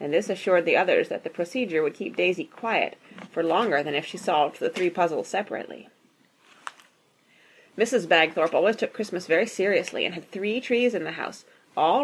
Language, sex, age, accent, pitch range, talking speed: English, female, 30-49, American, 175-255 Hz, 185 wpm